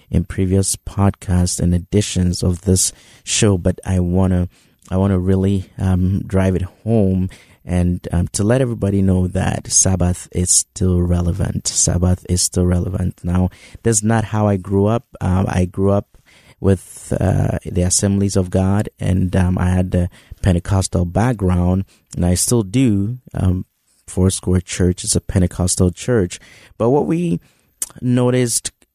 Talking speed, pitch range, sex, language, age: 150 wpm, 90-105 Hz, male, English, 30-49